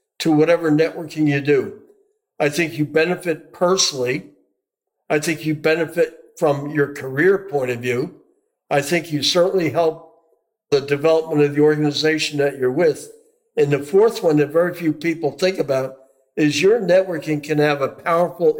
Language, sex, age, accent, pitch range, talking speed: English, male, 60-79, American, 145-175 Hz, 160 wpm